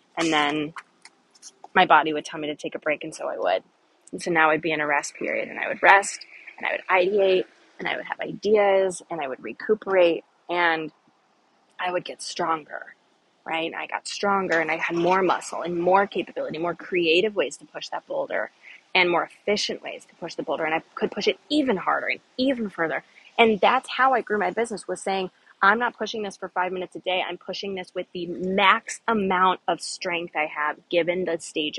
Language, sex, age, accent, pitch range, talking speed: English, female, 20-39, American, 170-210 Hz, 220 wpm